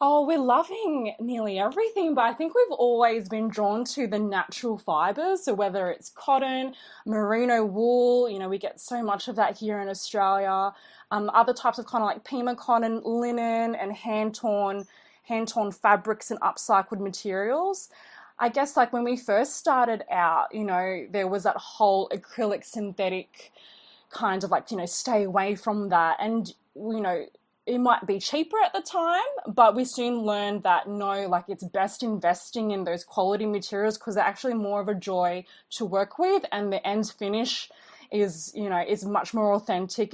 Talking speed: 180 wpm